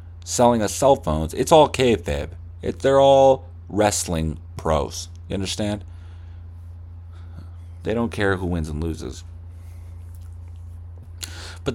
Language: English